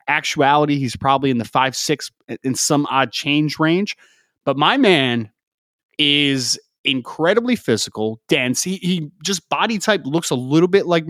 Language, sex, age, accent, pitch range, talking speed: English, male, 30-49, American, 125-170 Hz, 155 wpm